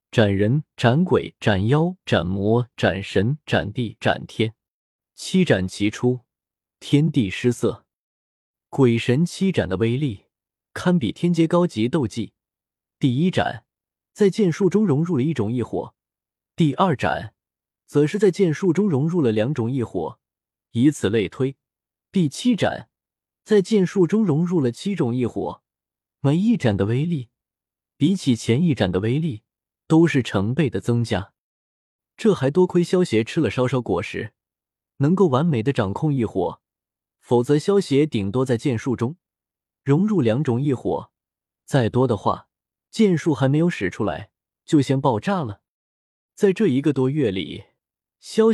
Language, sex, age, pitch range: Chinese, male, 20-39, 115-165 Hz